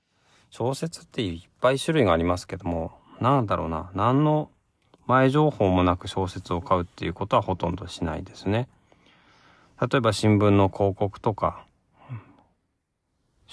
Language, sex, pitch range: Japanese, male, 90-115 Hz